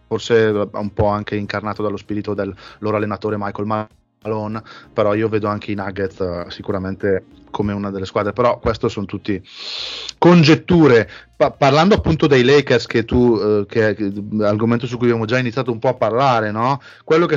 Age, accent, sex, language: 30-49, native, male, Italian